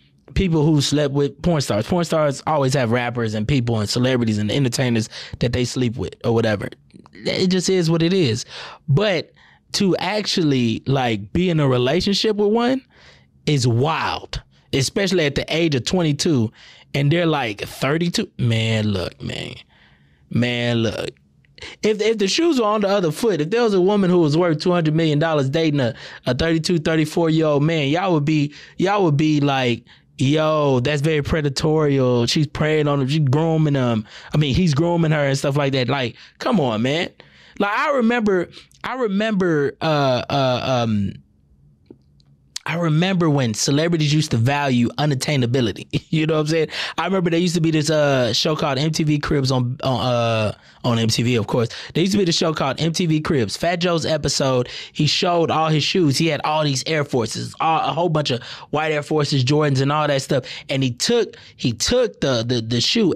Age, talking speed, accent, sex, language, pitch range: 20-39, 195 wpm, American, male, English, 125-170 Hz